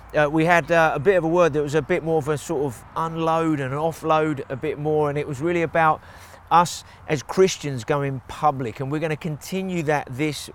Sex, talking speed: male, 235 wpm